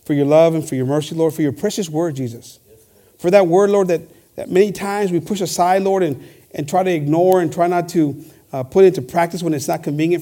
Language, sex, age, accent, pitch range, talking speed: English, male, 50-69, American, 150-190 Hz, 245 wpm